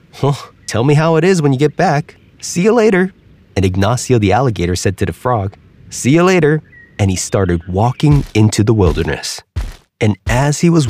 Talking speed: 195 wpm